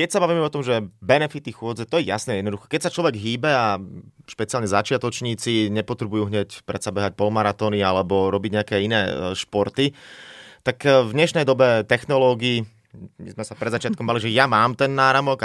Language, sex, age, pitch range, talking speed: Slovak, male, 30-49, 105-130 Hz, 175 wpm